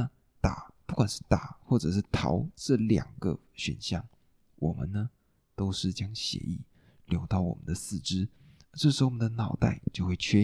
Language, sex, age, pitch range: Chinese, male, 20-39, 95-125 Hz